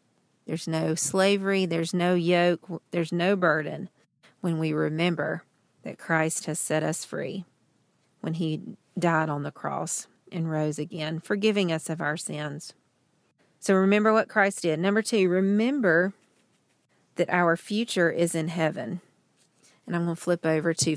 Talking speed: 150 wpm